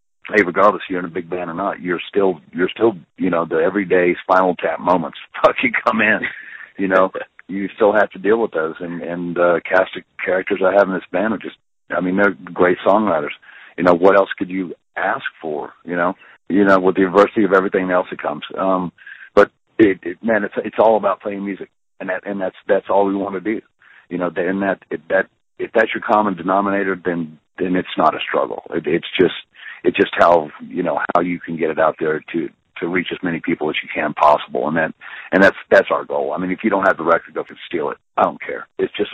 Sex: male